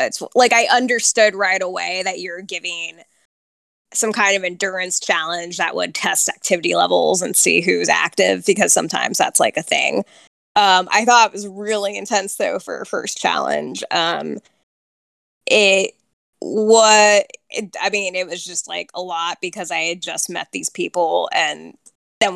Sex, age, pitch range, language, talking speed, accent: female, 10-29, 175-210 Hz, English, 165 wpm, American